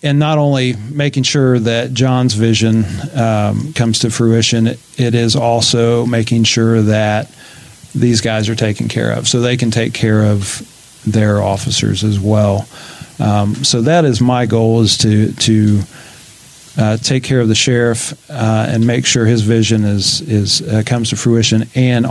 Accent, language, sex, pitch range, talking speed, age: American, English, male, 105-125 Hz, 170 wpm, 40-59